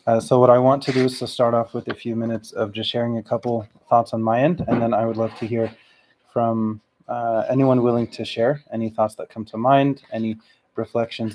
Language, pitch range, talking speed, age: English, 115-135 Hz, 240 wpm, 20-39